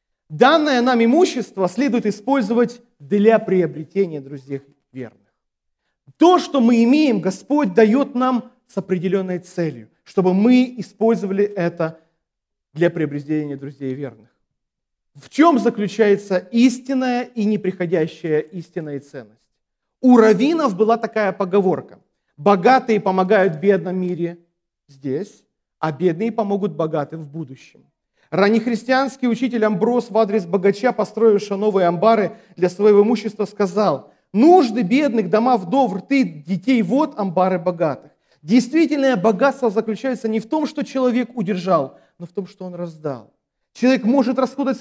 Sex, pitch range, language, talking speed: male, 180-250 Hz, Russian, 125 wpm